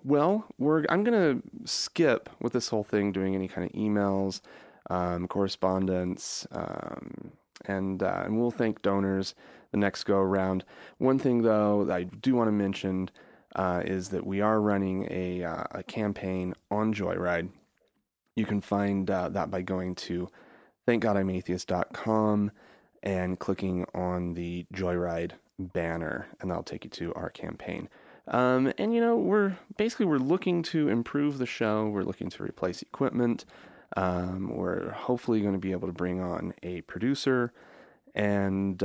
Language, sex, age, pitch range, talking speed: English, male, 30-49, 90-115 Hz, 155 wpm